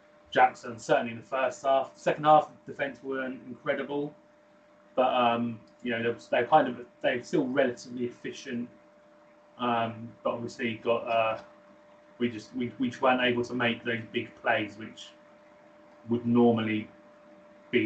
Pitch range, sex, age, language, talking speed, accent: 115-130 Hz, male, 30-49, English, 140 wpm, British